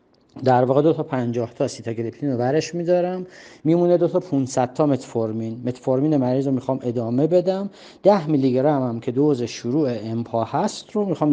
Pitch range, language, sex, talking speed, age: 120-160 Hz, Persian, male, 170 wpm, 40-59